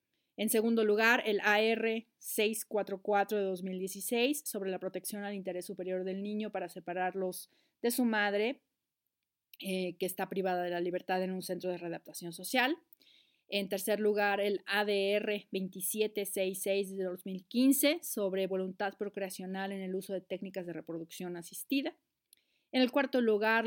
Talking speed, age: 145 wpm, 40-59